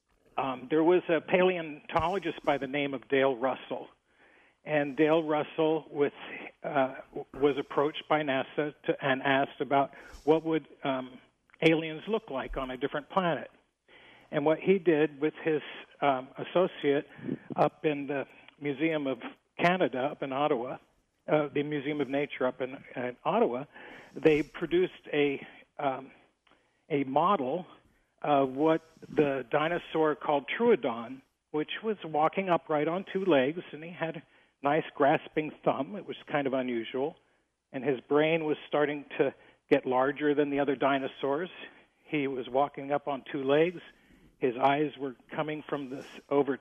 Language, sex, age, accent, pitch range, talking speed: English, male, 50-69, American, 140-155 Hz, 150 wpm